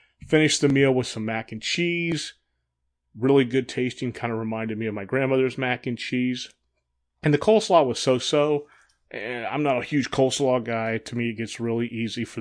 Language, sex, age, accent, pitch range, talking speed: English, male, 30-49, American, 110-130 Hz, 195 wpm